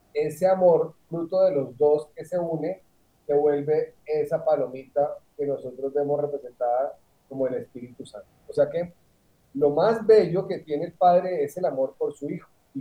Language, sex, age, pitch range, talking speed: Spanish, male, 40-59, 140-180 Hz, 180 wpm